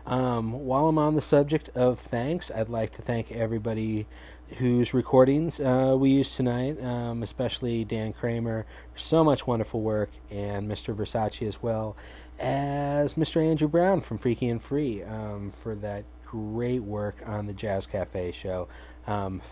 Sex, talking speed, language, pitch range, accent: male, 160 wpm, English, 110-130 Hz, American